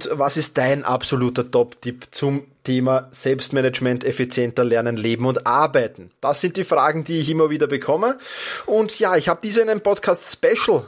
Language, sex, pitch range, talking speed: German, male, 130-185 Hz, 170 wpm